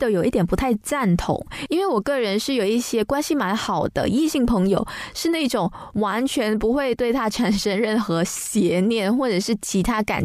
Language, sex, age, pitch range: Chinese, female, 20-39, 195-255 Hz